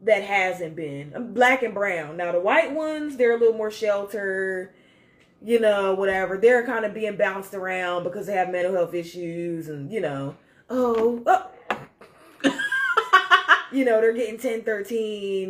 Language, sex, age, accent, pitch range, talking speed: English, female, 20-39, American, 165-225 Hz, 160 wpm